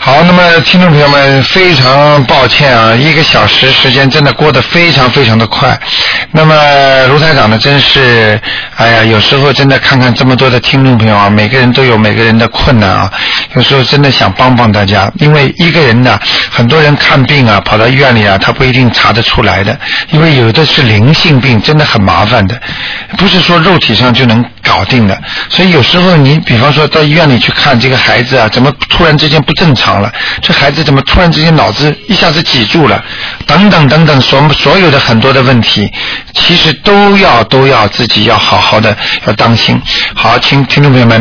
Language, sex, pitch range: Chinese, male, 115-150 Hz